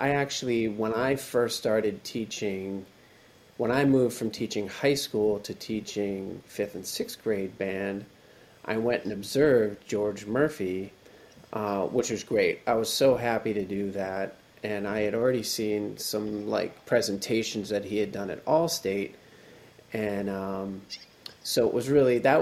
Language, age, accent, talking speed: English, 30-49, American, 160 wpm